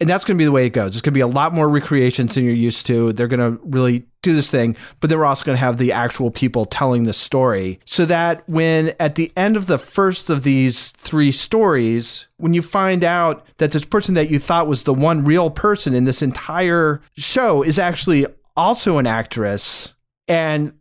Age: 30-49